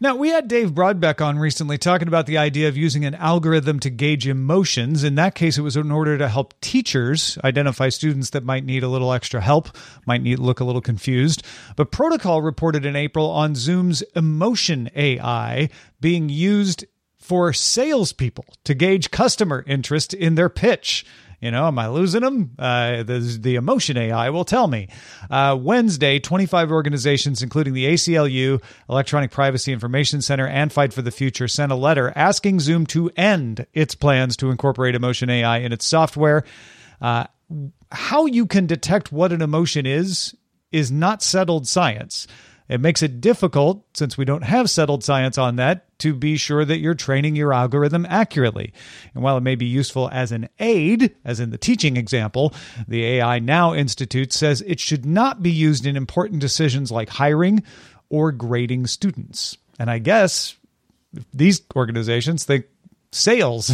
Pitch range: 130-165 Hz